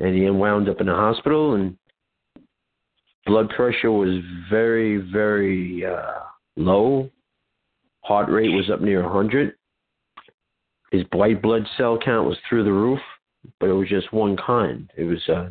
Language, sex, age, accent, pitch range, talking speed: English, male, 50-69, American, 100-115 Hz, 150 wpm